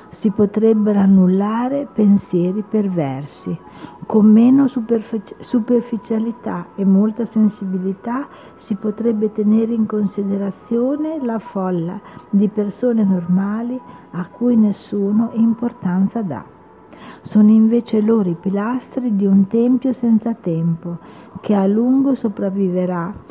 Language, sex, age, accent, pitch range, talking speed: Italian, female, 50-69, native, 190-230 Hz, 105 wpm